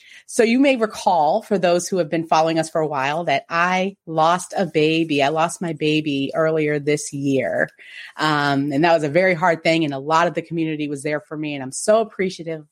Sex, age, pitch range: female, 30-49, 155-195 Hz